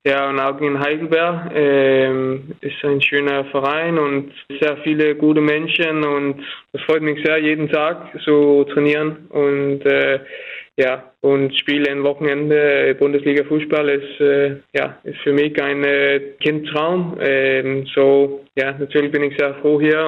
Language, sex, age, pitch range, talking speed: German, male, 20-39, 135-150 Hz, 150 wpm